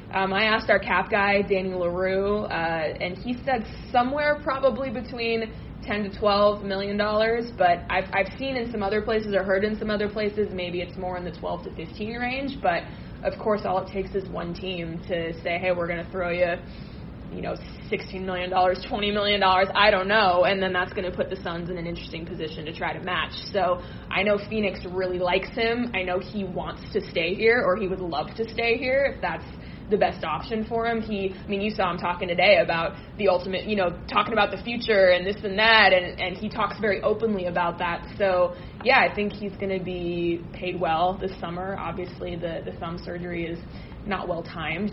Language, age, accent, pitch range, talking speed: English, 20-39, American, 175-205 Hz, 220 wpm